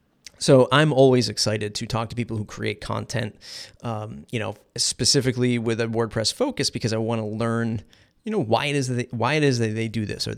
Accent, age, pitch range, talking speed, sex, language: American, 30-49, 110-125 Hz, 200 wpm, male, English